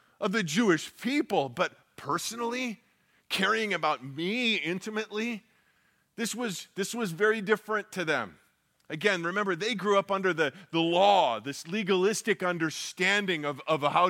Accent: American